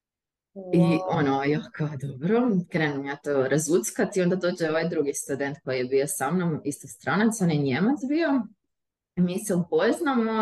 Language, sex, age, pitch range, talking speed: Croatian, female, 20-39, 145-190 Hz, 160 wpm